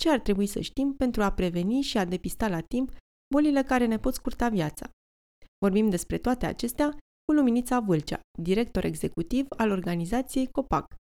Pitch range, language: 180-245 Hz, Romanian